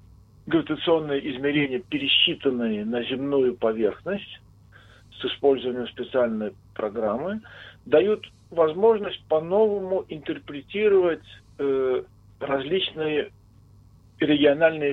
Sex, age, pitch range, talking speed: male, 40-59, 110-160 Hz, 65 wpm